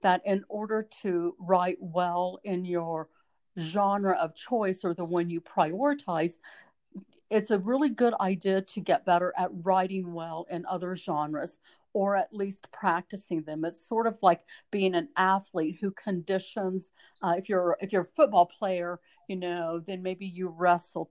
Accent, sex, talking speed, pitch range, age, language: American, female, 165 wpm, 175-205 Hz, 50-69, English